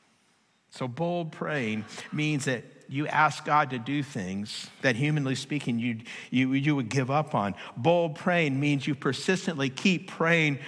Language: English